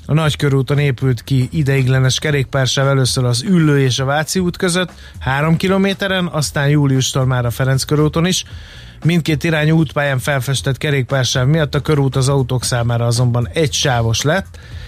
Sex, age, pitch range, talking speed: male, 30-49, 130-155 Hz, 155 wpm